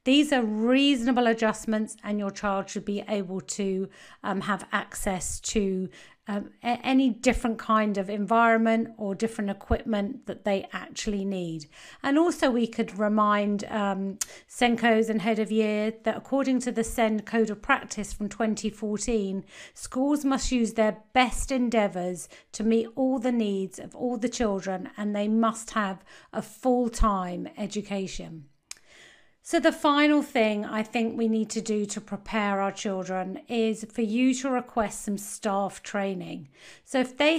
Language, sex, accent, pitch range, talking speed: English, female, British, 205-245 Hz, 155 wpm